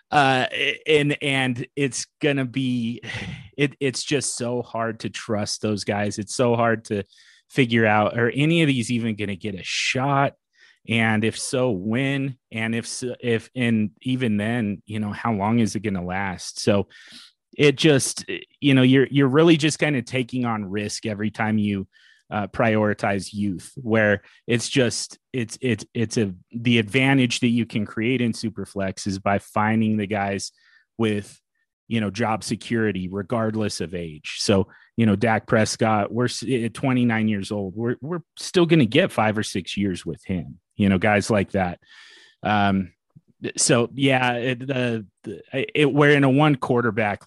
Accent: American